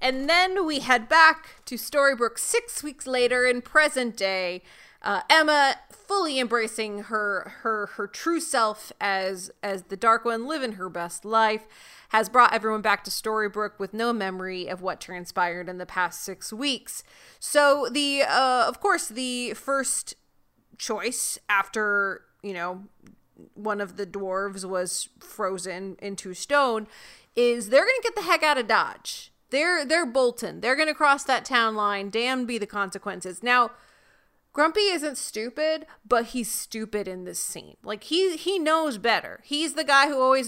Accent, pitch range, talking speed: American, 205-285 Hz, 165 wpm